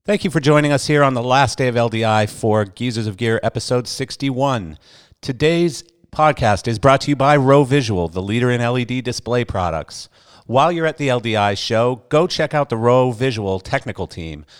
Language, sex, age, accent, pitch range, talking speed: English, male, 50-69, American, 105-135 Hz, 195 wpm